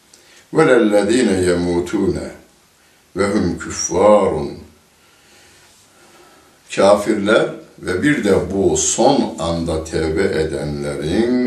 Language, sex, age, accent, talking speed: Turkish, male, 60-79, native, 70 wpm